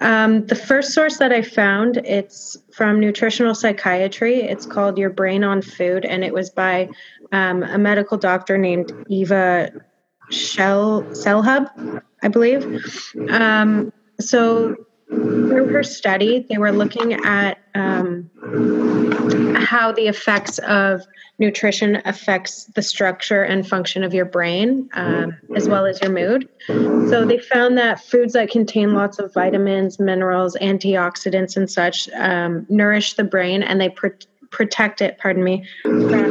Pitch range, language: 185-220 Hz, English